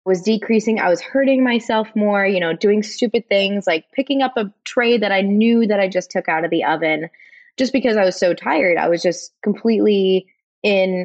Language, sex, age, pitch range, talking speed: English, female, 20-39, 170-230 Hz, 210 wpm